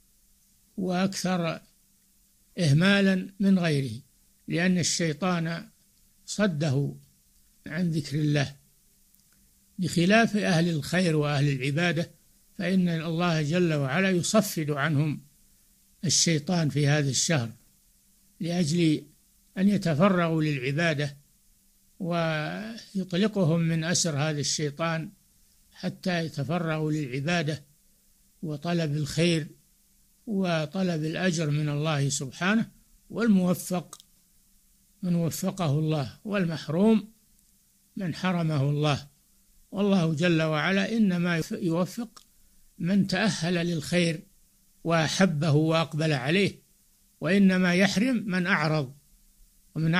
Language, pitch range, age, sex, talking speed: Arabic, 150-190 Hz, 60-79, male, 80 wpm